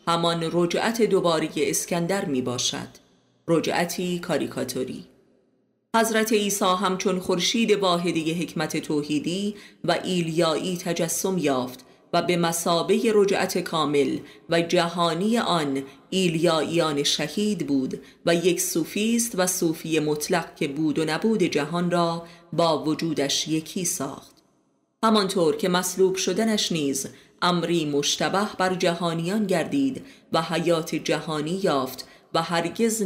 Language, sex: Persian, female